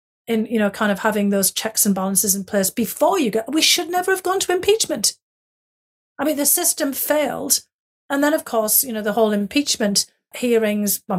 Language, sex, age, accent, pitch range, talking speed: English, female, 40-59, British, 195-225 Hz, 205 wpm